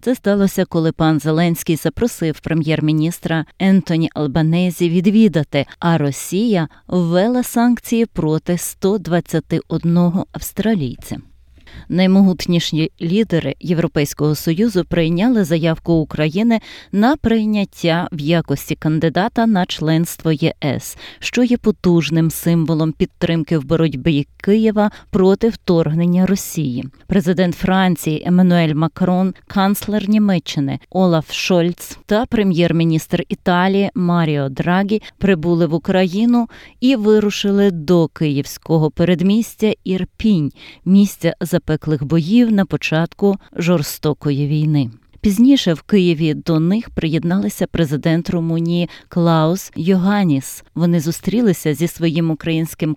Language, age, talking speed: Ukrainian, 20-39, 100 wpm